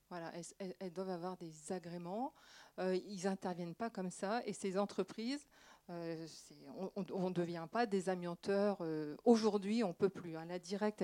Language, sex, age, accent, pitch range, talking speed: French, female, 40-59, French, 180-225 Hz, 175 wpm